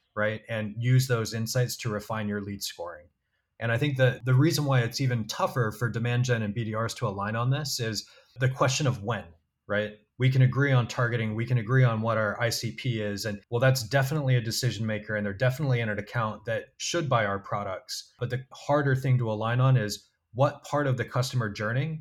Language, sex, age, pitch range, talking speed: English, male, 20-39, 110-130 Hz, 220 wpm